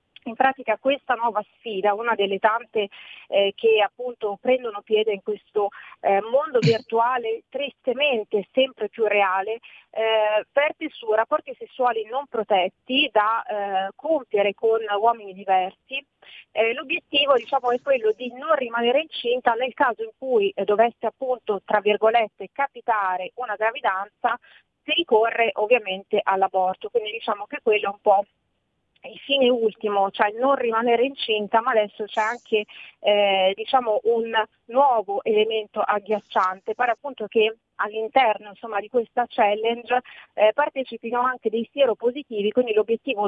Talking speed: 140 wpm